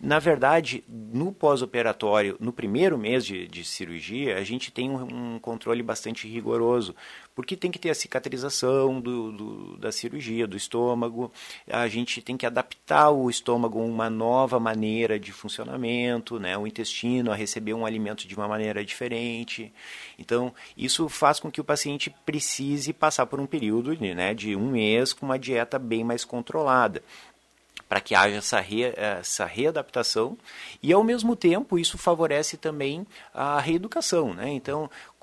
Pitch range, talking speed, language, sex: 110-135 Hz, 160 wpm, Portuguese, male